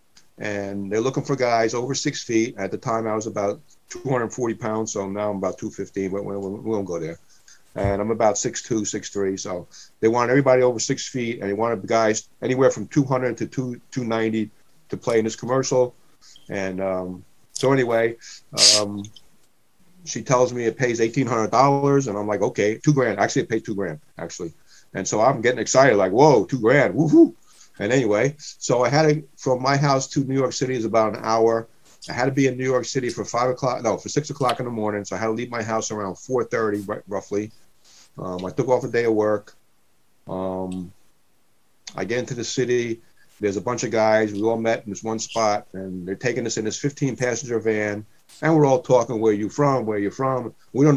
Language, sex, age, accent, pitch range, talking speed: English, male, 50-69, American, 105-125 Hz, 210 wpm